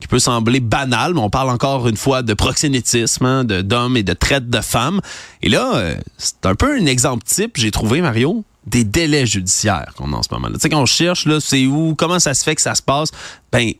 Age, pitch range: 30-49, 115-165 Hz